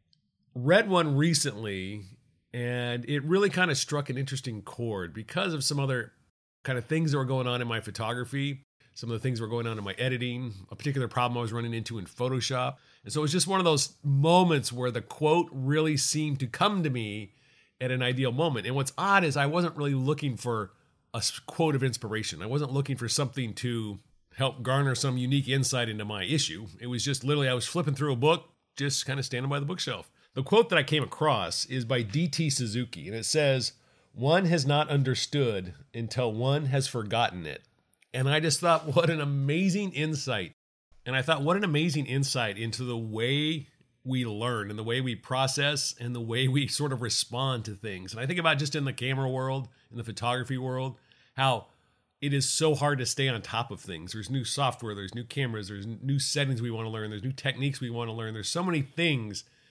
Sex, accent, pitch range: male, American, 120-145 Hz